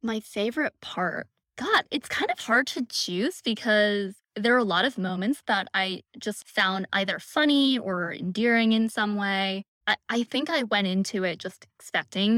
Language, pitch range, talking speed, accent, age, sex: English, 175-225 Hz, 180 wpm, American, 10-29, female